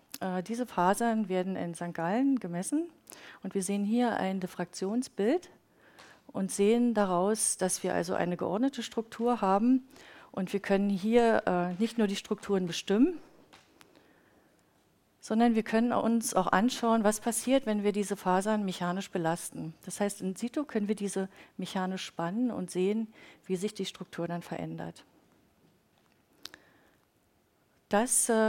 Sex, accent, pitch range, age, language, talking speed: female, German, 185-230 Hz, 40-59, German, 135 wpm